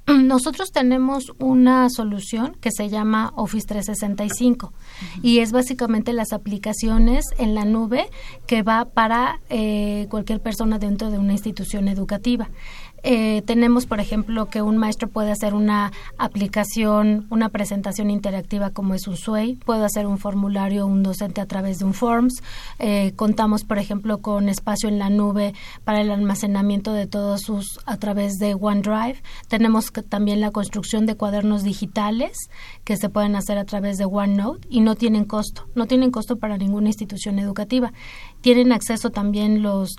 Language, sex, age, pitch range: Spanish, female, 30-49, 200-230 Hz